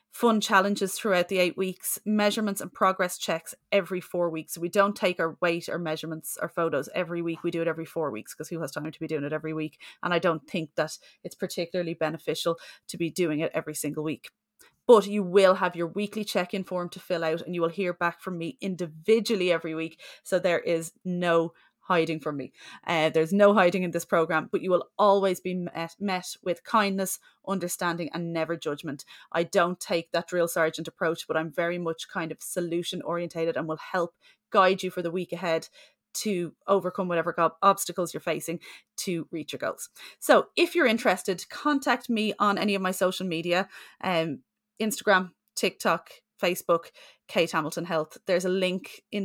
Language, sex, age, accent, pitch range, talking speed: English, female, 30-49, Irish, 165-195 Hz, 195 wpm